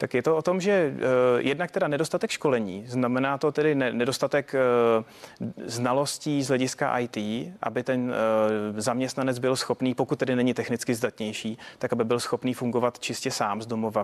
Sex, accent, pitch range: male, native, 115-130 Hz